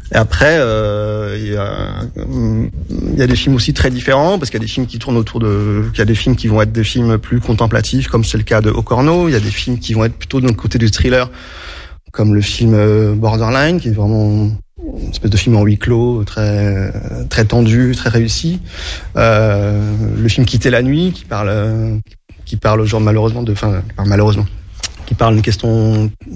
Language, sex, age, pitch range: French, male, 30-49, 105-120 Hz